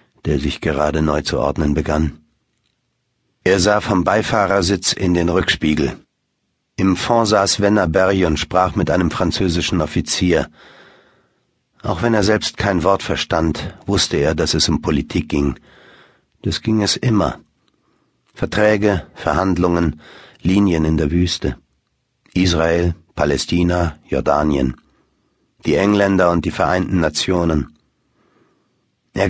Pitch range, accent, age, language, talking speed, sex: 80-105 Hz, German, 60-79, German, 120 wpm, male